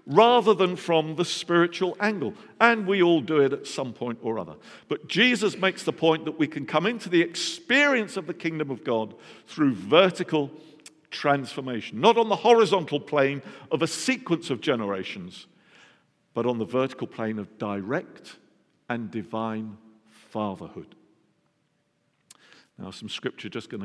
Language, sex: English, male